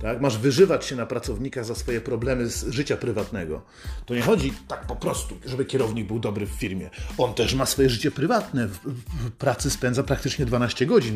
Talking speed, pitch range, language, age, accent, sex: 200 wpm, 120-155 Hz, Polish, 40-59, native, male